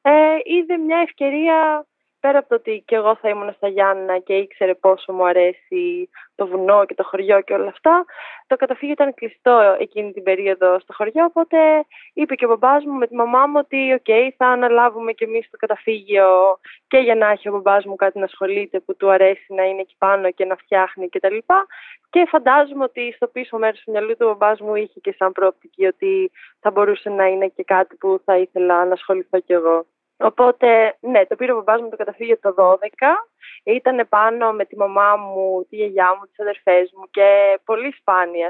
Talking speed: 205 wpm